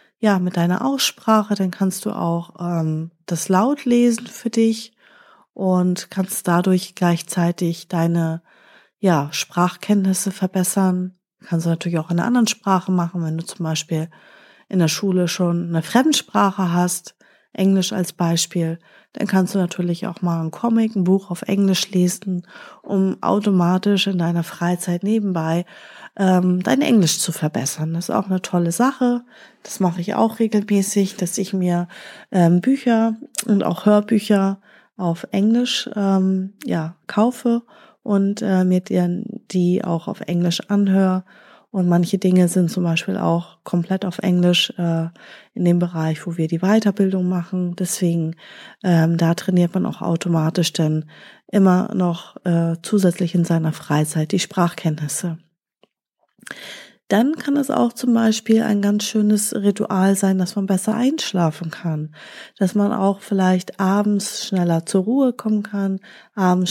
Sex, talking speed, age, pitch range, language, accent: female, 145 wpm, 30-49, 175-210 Hz, German, German